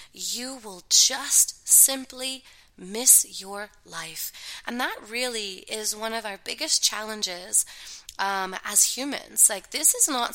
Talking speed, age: 135 wpm, 20-39